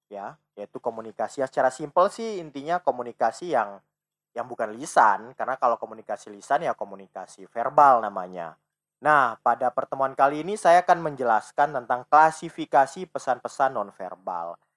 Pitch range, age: 130-170 Hz, 20-39